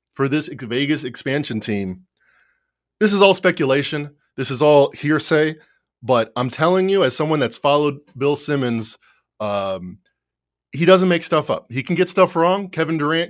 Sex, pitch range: male, 120-160 Hz